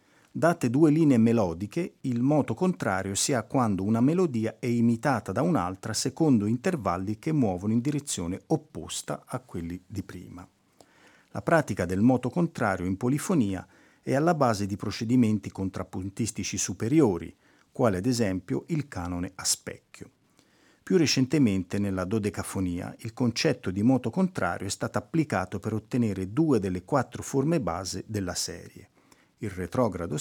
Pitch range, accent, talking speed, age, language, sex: 95-130 Hz, native, 140 wpm, 50-69, Italian, male